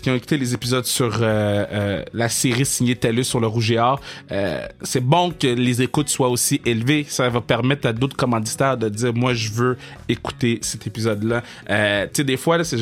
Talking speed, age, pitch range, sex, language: 230 wpm, 30-49, 115-155 Hz, male, French